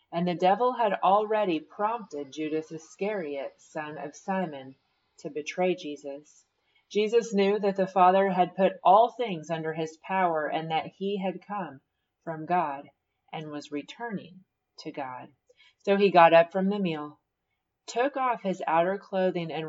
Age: 30-49